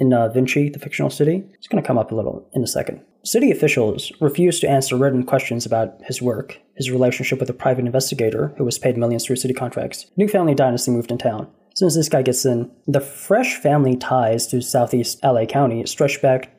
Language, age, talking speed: English, 20-39, 225 wpm